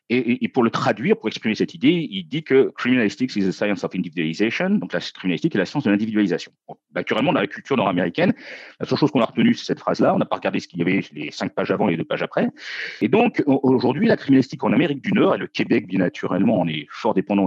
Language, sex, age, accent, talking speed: French, male, 40-59, French, 260 wpm